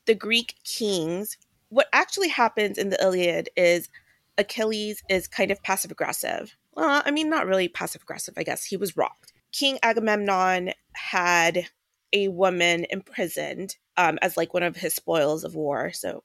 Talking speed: 165 wpm